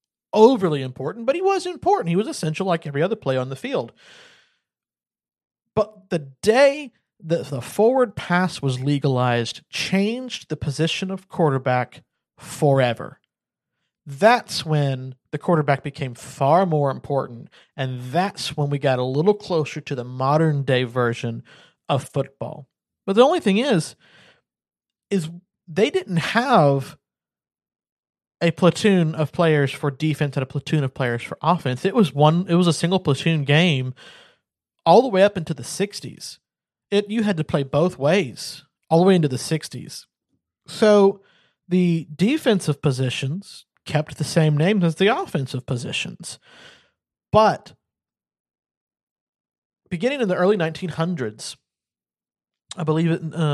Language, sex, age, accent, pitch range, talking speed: English, male, 40-59, American, 140-190 Hz, 145 wpm